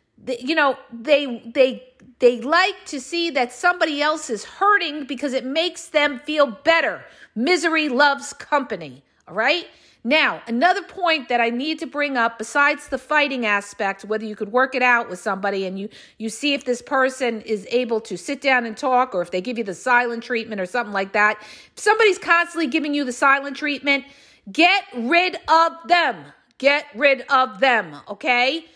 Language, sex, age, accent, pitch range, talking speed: English, female, 50-69, American, 235-320 Hz, 185 wpm